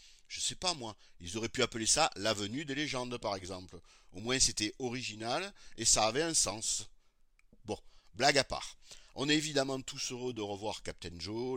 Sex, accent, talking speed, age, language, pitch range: male, French, 185 wpm, 50-69, French, 110-145 Hz